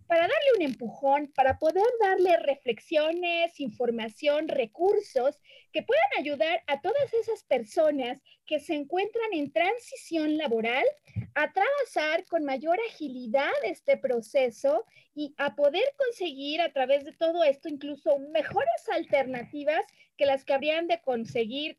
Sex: female